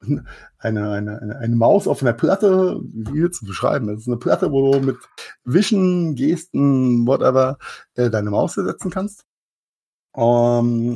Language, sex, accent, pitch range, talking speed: German, male, German, 110-140 Hz, 155 wpm